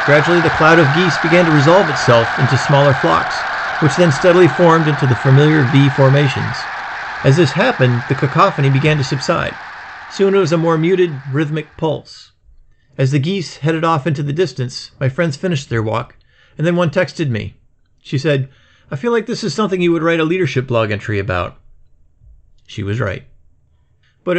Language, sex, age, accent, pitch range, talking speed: English, male, 40-59, American, 130-170 Hz, 185 wpm